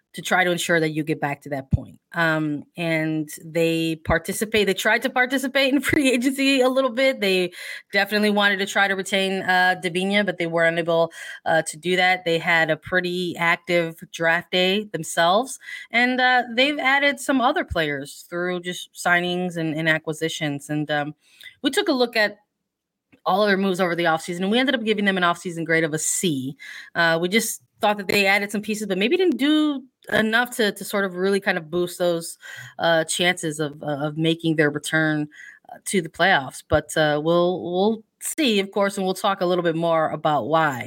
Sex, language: female, English